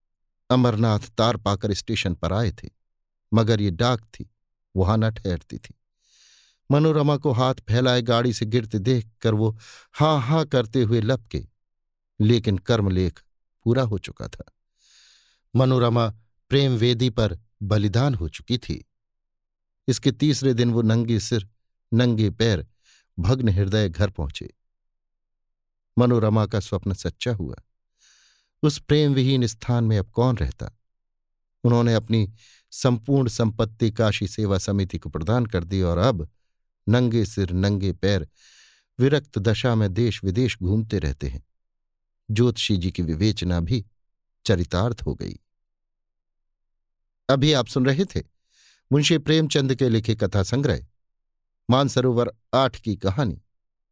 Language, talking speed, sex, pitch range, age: Hindi, 130 wpm, male, 100-120 Hz, 50-69